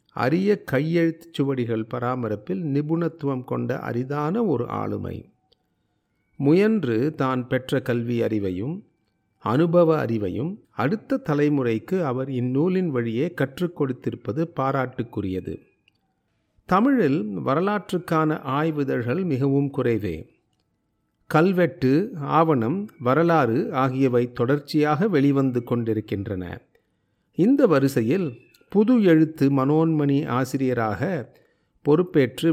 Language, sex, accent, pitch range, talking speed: Tamil, male, native, 120-165 Hz, 80 wpm